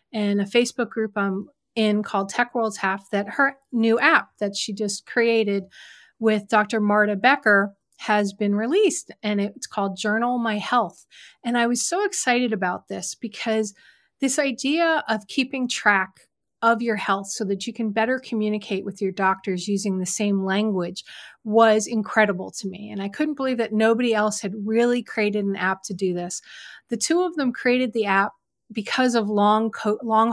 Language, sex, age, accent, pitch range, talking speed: English, female, 30-49, American, 200-240 Hz, 180 wpm